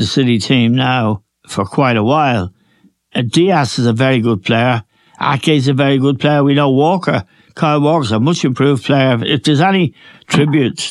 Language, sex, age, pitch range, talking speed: English, male, 60-79, 120-150 Hz, 170 wpm